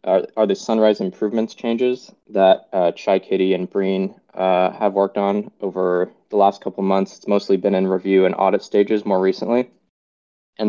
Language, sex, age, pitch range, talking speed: English, male, 20-39, 95-105 Hz, 185 wpm